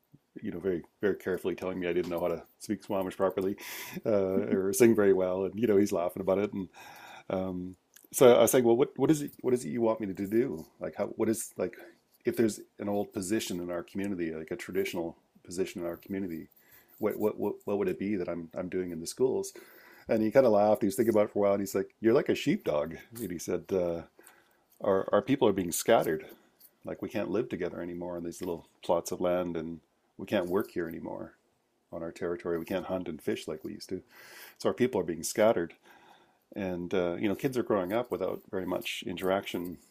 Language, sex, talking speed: English, male, 240 wpm